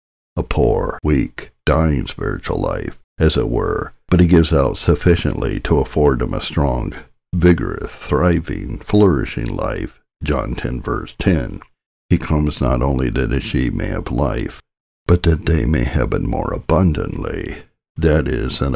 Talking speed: 155 wpm